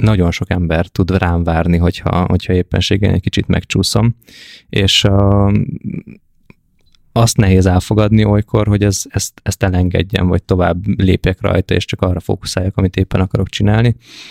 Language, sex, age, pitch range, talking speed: Hungarian, male, 20-39, 90-105 Hz, 145 wpm